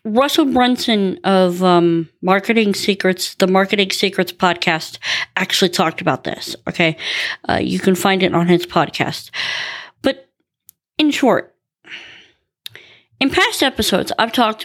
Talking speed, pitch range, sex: 125 wpm, 175-215 Hz, female